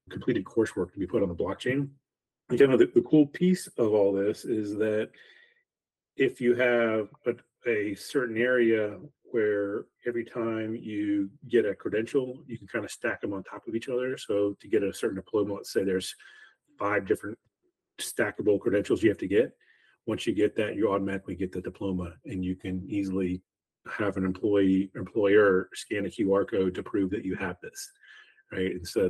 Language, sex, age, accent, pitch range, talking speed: English, male, 30-49, American, 95-120 Hz, 185 wpm